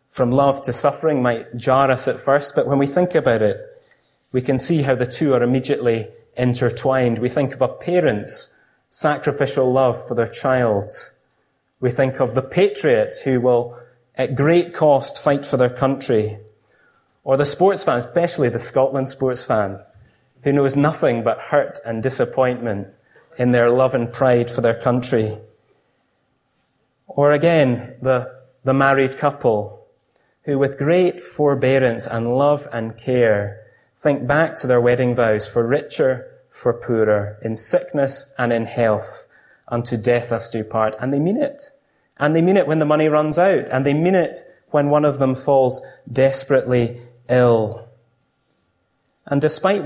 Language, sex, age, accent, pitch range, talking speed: English, male, 30-49, British, 120-145 Hz, 160 wpm